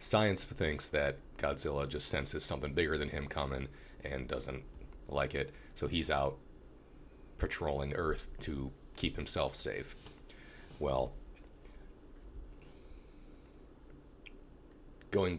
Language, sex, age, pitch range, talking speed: English, male, 40-59, 70-85 Hz, 100 wpm